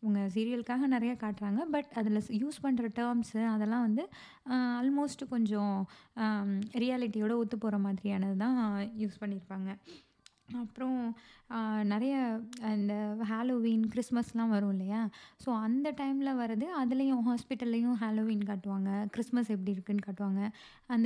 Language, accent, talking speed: Tamil, native, 110 wpm